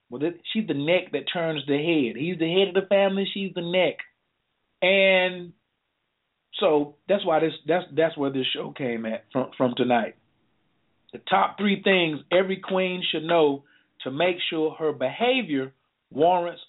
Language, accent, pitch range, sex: English, American, 150-195 Hz, male